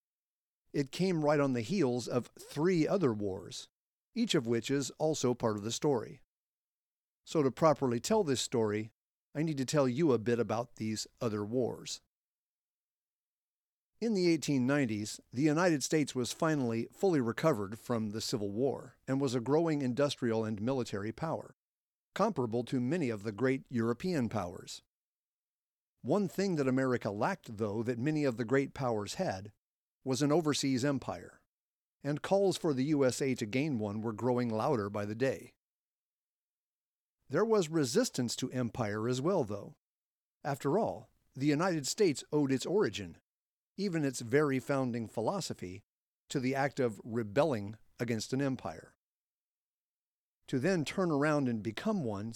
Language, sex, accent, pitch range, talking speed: English, male, American, 115-150 Hz, 150 wpm